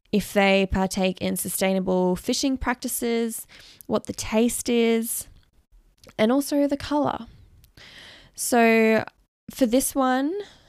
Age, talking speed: 10-29, 105 wpm